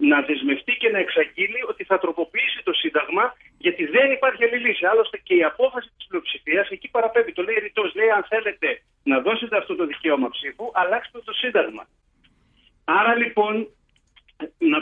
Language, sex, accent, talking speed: Greek, male, native, 165 wpm